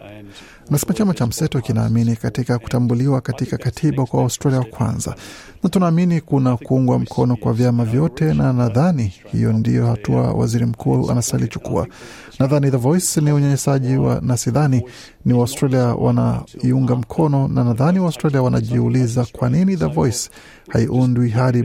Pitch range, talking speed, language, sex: 120-140 Hz, 135 wpm, Swahili, male